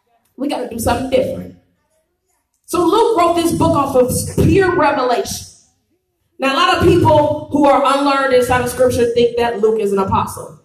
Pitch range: 210-285 Hz